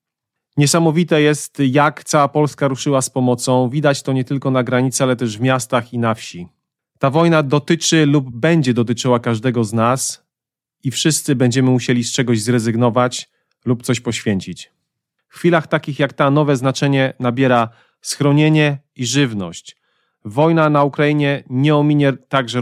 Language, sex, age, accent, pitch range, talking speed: Polish, male, 40-59, native, 125-145 Hz, 150 wpm